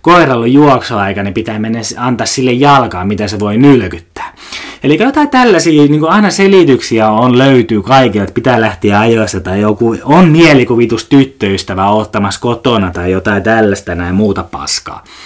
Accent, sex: native, male